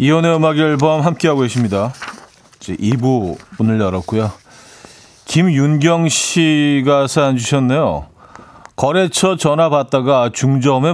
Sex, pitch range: male, 105-145 Hz